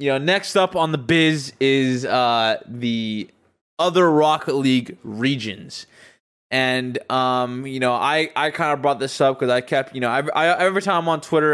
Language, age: English, 20-39